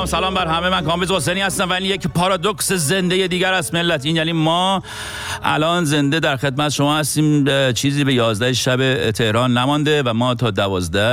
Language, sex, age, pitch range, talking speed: Persian, male, 50-69, 100-140 Hz, 185 wpm